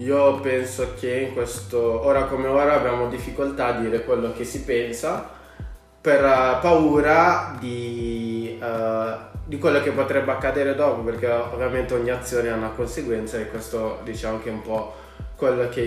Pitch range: 110-130 Hz